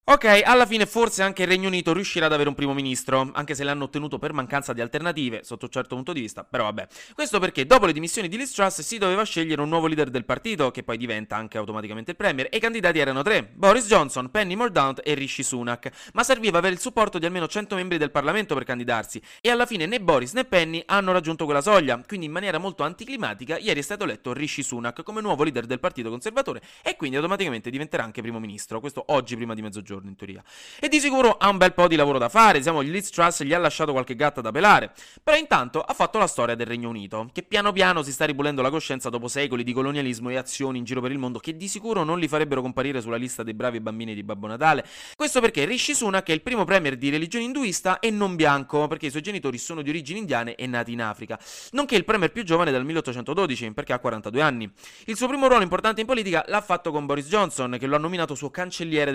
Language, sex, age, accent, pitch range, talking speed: Italian, male, 30-49, native, 125-195 Hz, 240 wpm